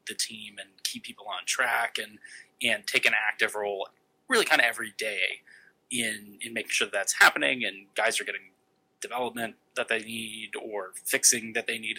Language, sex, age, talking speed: English, male, 20-39, 190 wpm